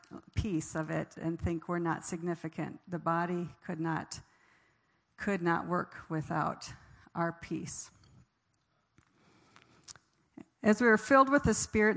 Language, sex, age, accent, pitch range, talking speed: English, female, 50-69, American, 170-200 Hz, 120 wpm